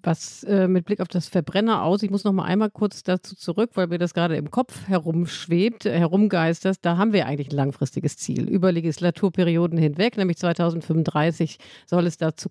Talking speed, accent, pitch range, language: 185 wpm, German, 160-195 Hz, German